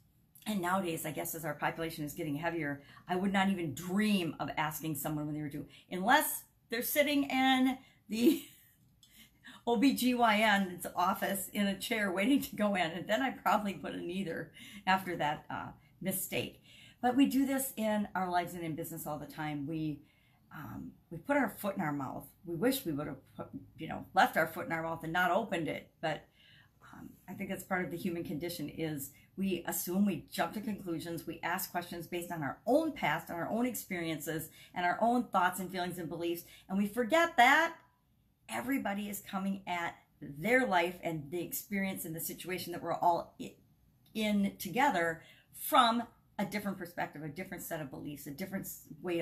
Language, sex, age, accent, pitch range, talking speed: English, female, 50-69, American, 165-210 Hz, 190 wpm